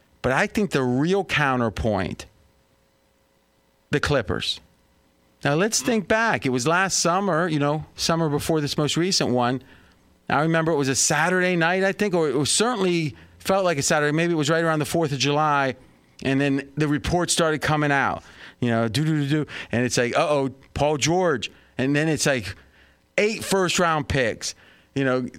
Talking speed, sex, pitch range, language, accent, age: 185 wpm, male, 130-165 Hz, English, American, 40-59